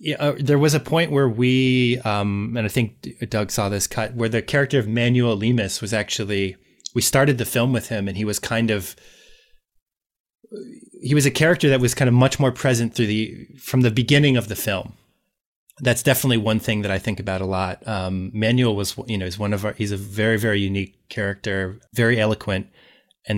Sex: male